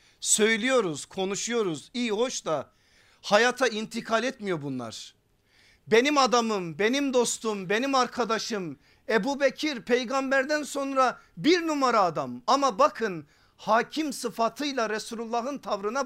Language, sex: Turkish, male